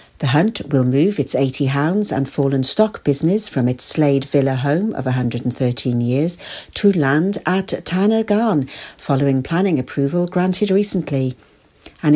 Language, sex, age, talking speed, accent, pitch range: English, female, 60-79, 145 wpm, British, 145-205 Hz